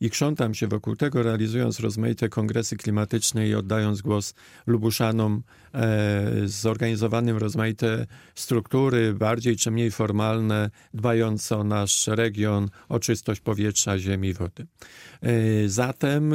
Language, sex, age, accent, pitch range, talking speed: Polish, male, 40-59, native, 110-130 Hz, 115 wpm